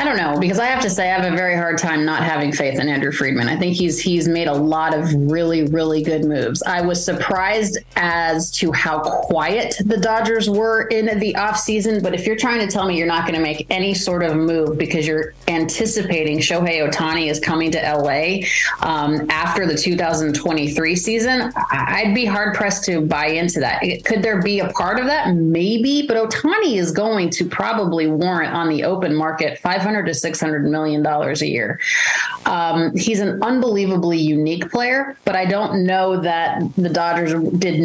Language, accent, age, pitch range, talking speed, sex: English, American, 30-49, 160-200 Hz, 195 wpm, female